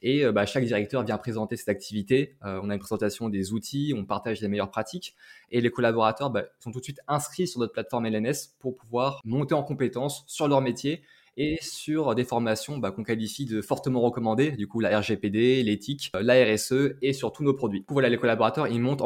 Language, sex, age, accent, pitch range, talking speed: French, male, 20-39, French, 110-135 Hz, 220 wpm